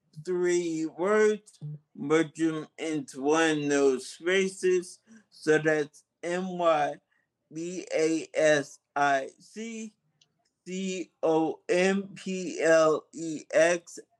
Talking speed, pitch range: 50 wpm, 145-185 Hz